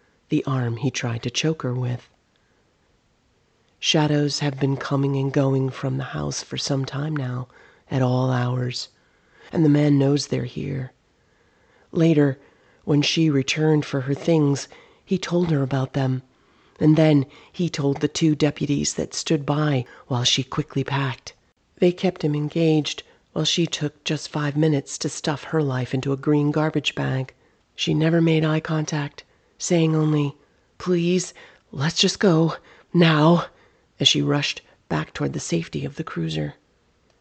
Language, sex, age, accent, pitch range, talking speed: English, female, 40-59, American, 130-155 Hz, 155 wpm